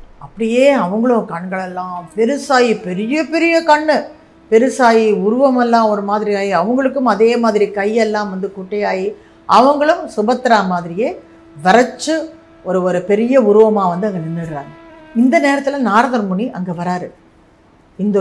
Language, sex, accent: Tamil, female, native